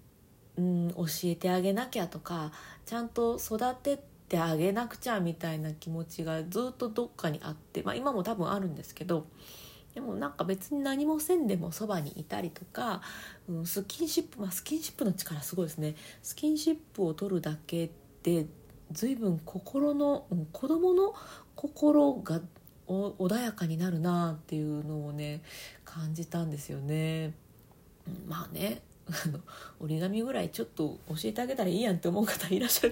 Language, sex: Japanese, female